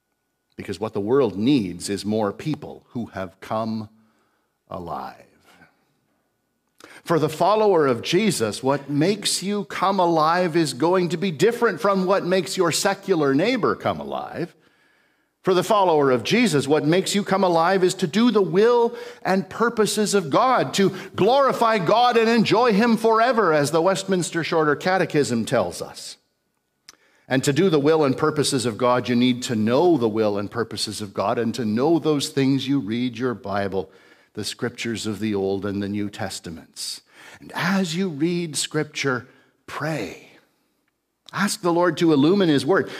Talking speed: 165 wpm